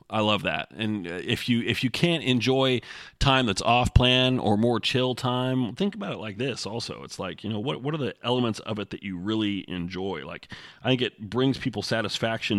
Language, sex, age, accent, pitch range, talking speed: English, male, 30-49, American, 100-120 Hz, 220 wpm